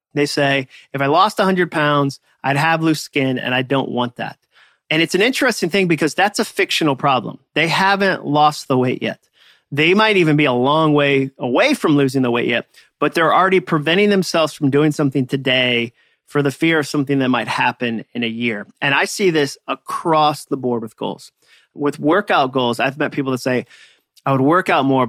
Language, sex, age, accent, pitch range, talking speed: English, male, 30-49, American, 125-165 Hz, 210 wpm